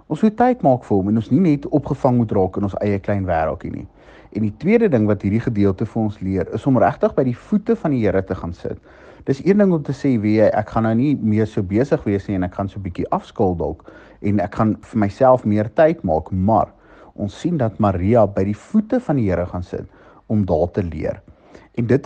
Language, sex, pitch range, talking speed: English, male, 100-145 Hz, 250 wpm